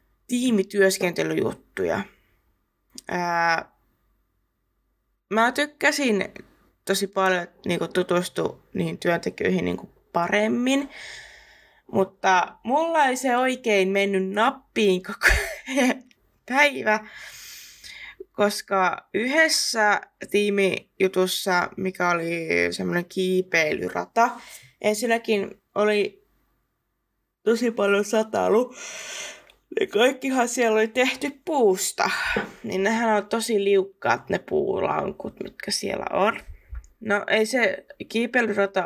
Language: Finnish